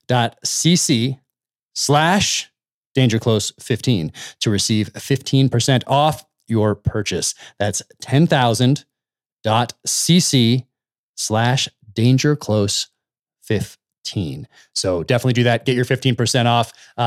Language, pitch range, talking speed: English, 100-130 Hz, 100 wpm